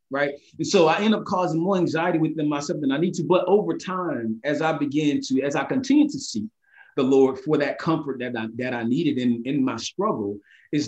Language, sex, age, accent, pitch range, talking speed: English, male, 30-49, American, 135-175 Hz, 230 wpm